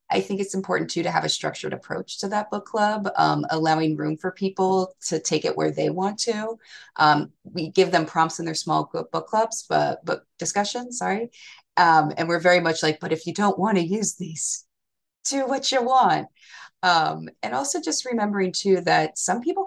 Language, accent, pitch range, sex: English, American, 150-195 Hz, female